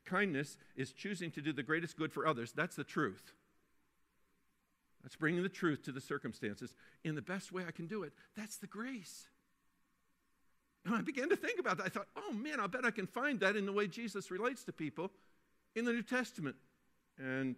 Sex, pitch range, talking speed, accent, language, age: male, 120-155 Hz, 205 wpm, American, English, 50-69